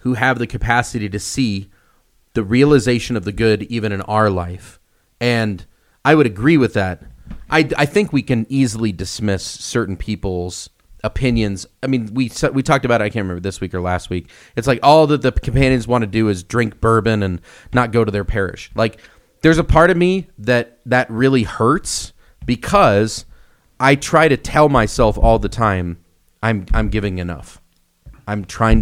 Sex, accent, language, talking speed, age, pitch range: male, American, English, 185 wpm, 30-49, 100-130 Hz